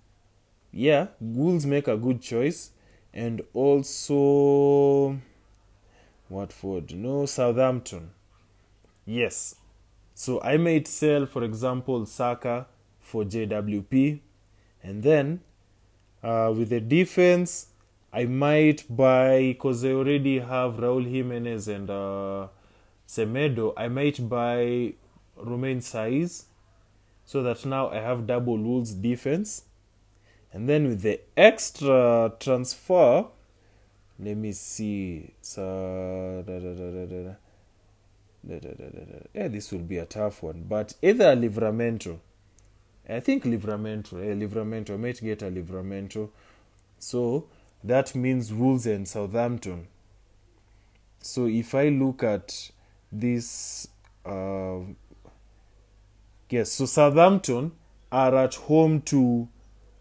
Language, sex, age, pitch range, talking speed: English, male, 20-39, 100-130 Hz, 100 wpm